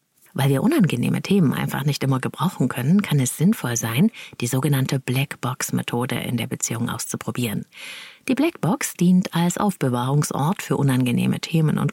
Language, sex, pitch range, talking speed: German, female, 135-205 Hz, 145 wpm